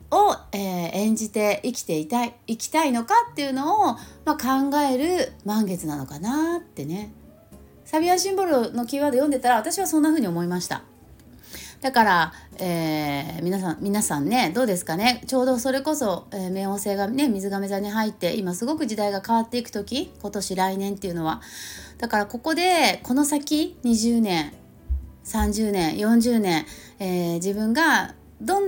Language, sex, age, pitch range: Japanese, female, 30-49, 195-285 Hz